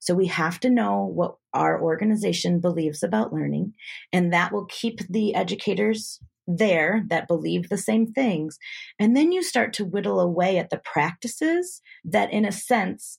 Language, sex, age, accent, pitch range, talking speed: English, female, 30-49, American, 165-225 Hz, 170 wpm